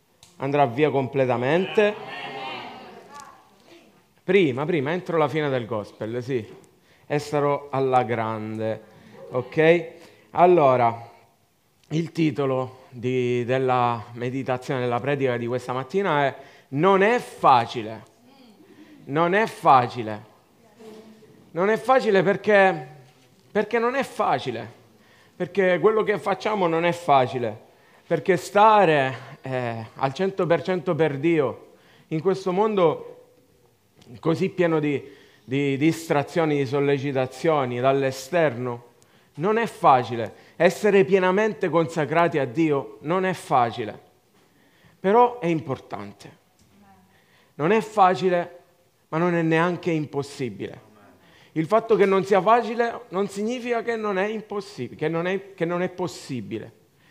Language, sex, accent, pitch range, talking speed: Italian, male, native, 130-195 Hz, 115 wpm